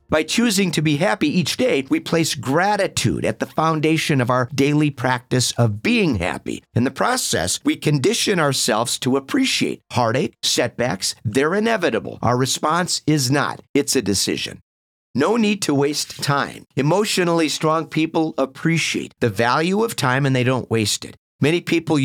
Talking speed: 160 wpm